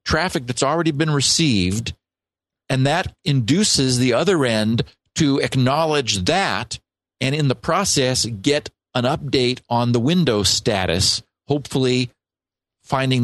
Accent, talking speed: American, 120 wpm